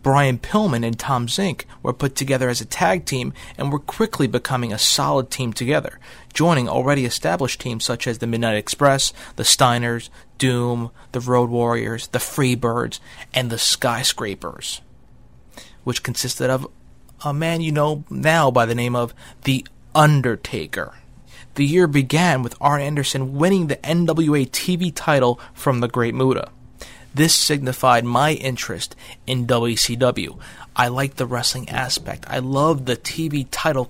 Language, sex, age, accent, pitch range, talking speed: English, male, 30-49, American, 120-150 Hz, 150 wpm